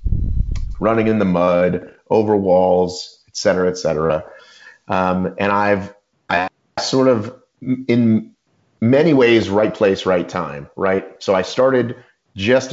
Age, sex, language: 30-49, male, English